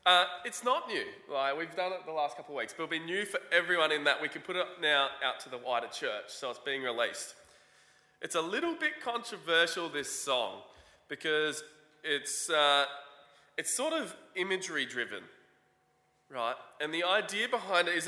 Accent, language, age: Australian, English, 20-39